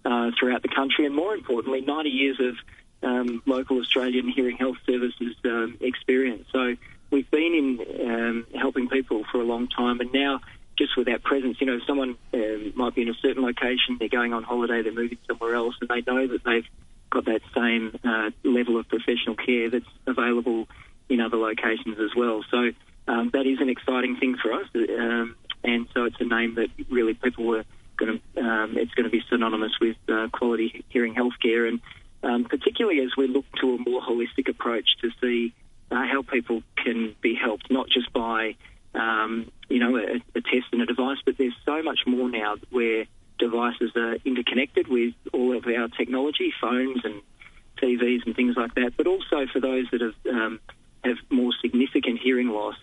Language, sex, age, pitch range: English, male, 40-59, 115-130 Hz